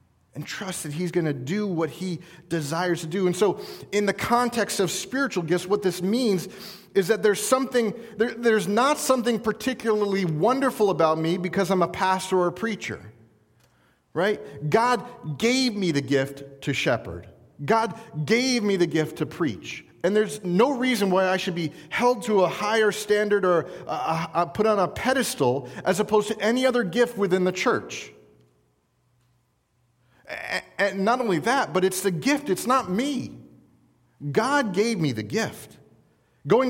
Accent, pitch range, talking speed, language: American, 170-230 Hz, 165 wpm, English